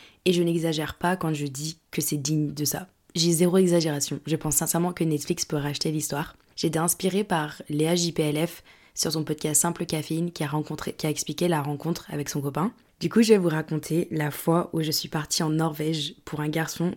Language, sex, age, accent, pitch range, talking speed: French, female, 20-39, French, 150-180 Hz, 220 wpm